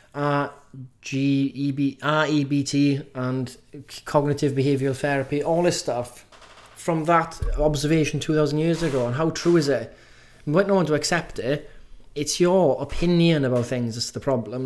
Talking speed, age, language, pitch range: 170 wpm, 20-39, English, 135-165 Hz